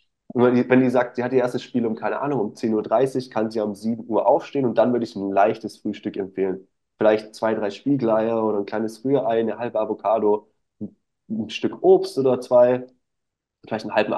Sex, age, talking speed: male, 20-39, 205 wpm